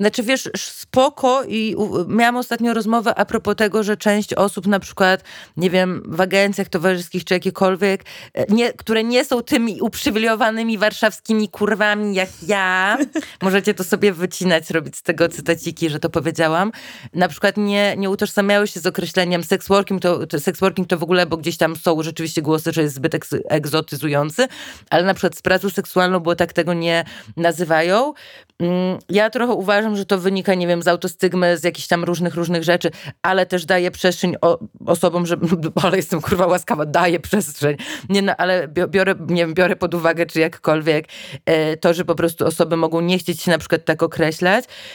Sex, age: female, 30-49